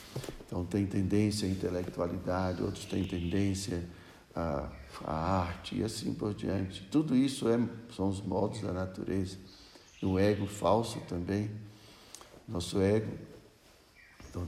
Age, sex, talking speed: 60-79, male, 125 wpm